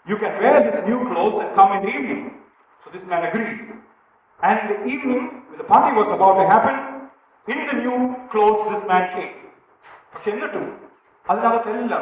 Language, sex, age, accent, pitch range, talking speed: English, male, 40-59, Indian, 210-330 Hz, 165 wpm